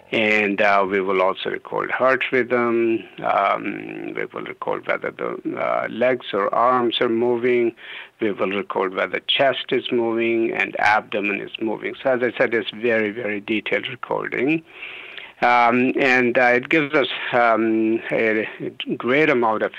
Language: English